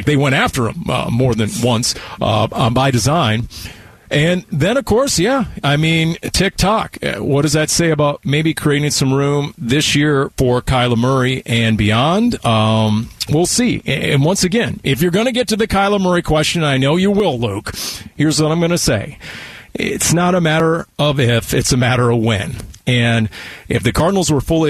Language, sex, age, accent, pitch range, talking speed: English, male, 40-59, American, 115-155 Hz, 190 wpm